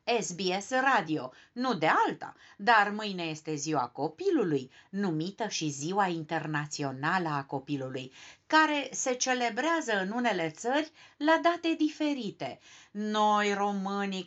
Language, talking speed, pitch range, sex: Romanian, 115 wpm, 165-250 Hz, female